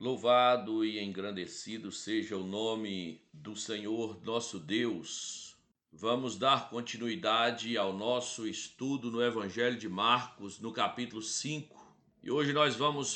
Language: Portuguese